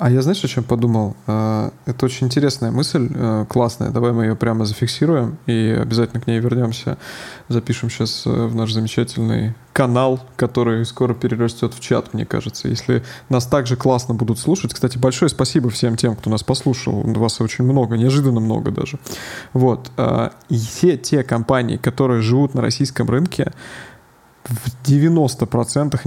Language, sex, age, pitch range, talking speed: Russian, male, 20-39, 115-135 Hz, 150 wpm